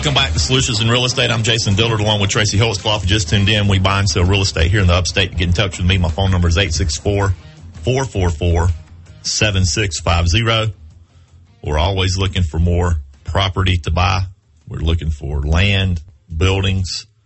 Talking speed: 175 wpm